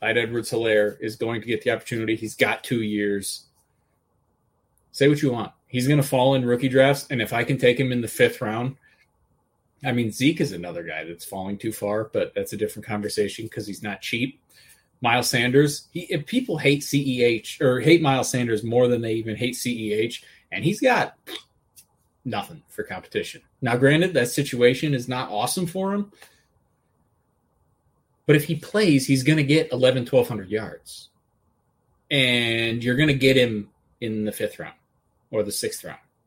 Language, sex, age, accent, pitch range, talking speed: English, male, 30-49, American, 115-155 Hz, 190 wpm